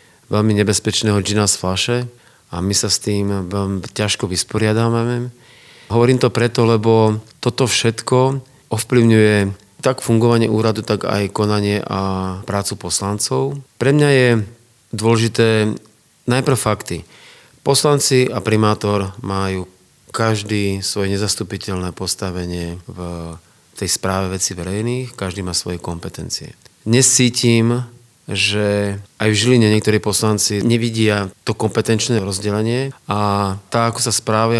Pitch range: 100-115 Hz